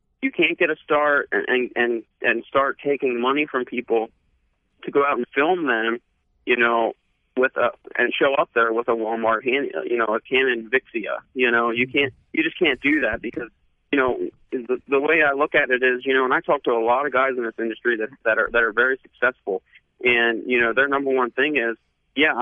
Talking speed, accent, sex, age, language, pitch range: 230 wpm, American, male, 30-49, English, 115-155 Hz